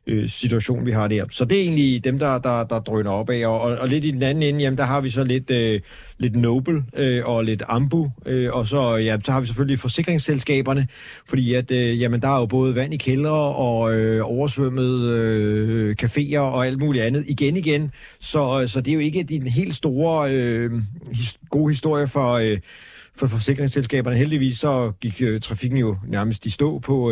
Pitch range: 115-135 Hz